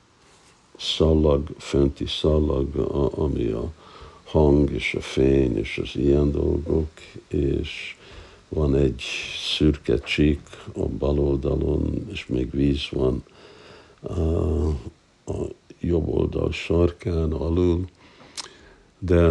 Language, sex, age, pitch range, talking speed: Hungarian, male, 60-79, 75-90 Hz, 90 wpm